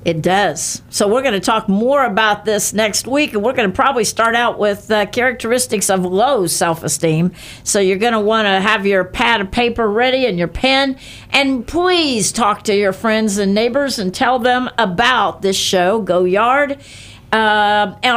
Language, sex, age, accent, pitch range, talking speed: English, female, 60-79, American, 195-245 Hz, 190 wpm